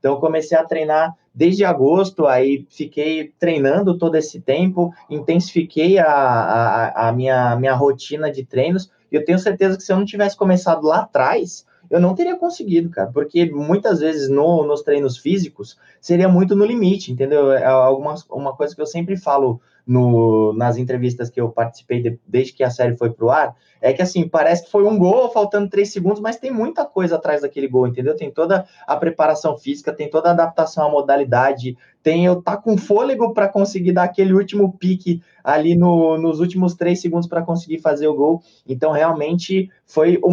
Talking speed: 190 wpm